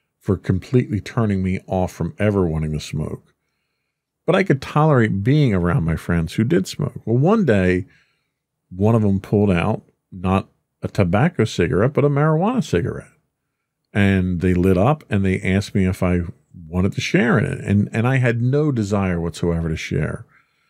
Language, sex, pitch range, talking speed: English, male, 95-135 Hz, 175 wpm